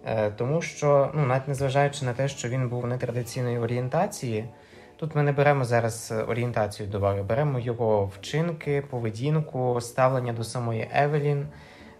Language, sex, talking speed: Ukrainian, male, 140 wpm